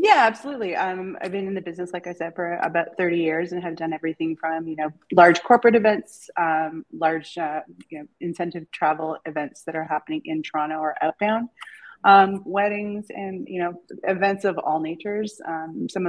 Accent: American